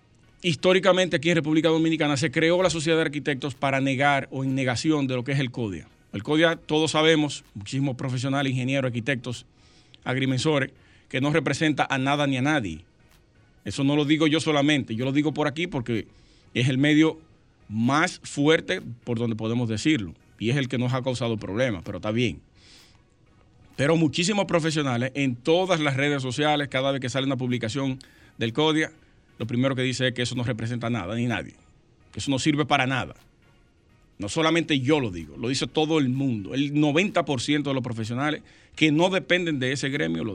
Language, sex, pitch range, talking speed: Spanish, male, 120-150 Hz, 190 wpm